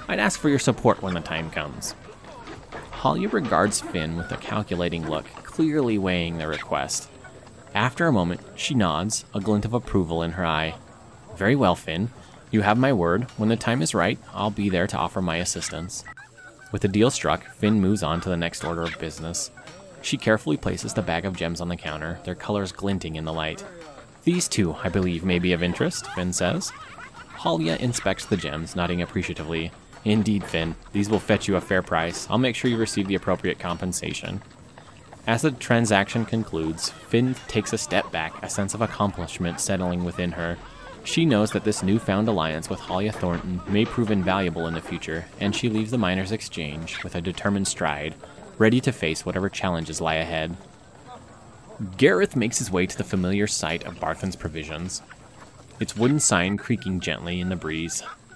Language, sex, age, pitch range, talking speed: English, male, 30-49, 85-110 Hz, 185 wpm